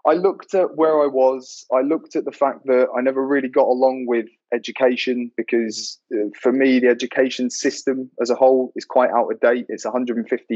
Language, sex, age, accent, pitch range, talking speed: English, male, 20-39, British, 115-140 Hz, 200 wpm